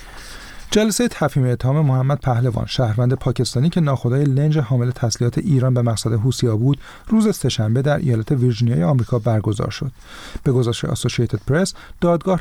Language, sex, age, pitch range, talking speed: Persian, male, 40-59, 120-155 Hz, 145 wpm